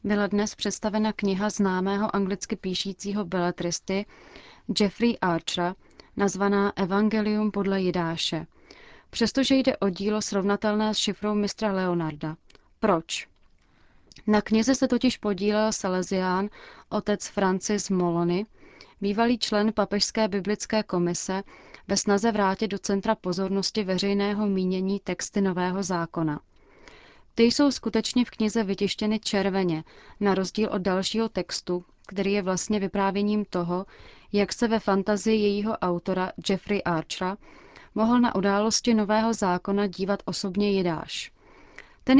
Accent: native